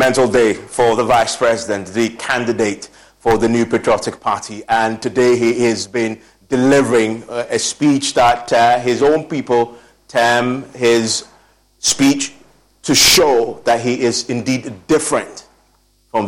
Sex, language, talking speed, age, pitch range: male, English, 135 wpm, 30-49, 120-145 Hz